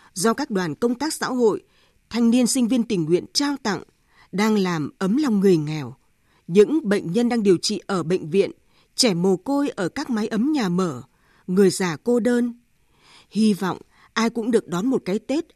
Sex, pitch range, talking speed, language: female, 190-260 Hz, 200 wpm, Vietnamese